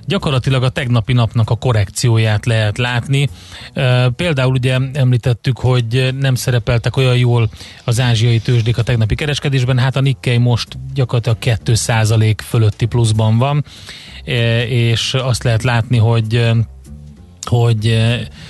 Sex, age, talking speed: male, 30-49, 120 wpm